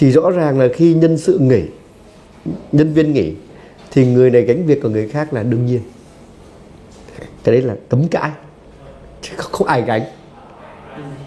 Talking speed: 165 wpm